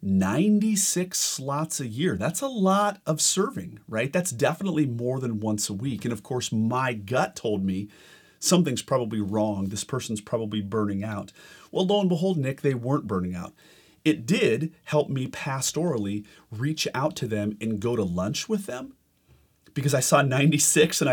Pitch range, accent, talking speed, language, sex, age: 105-150 Hz, American, 175 wpm, English, male, 40-59